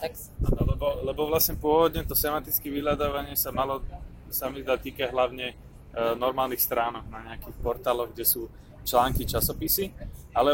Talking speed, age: 130 wpm, 20-39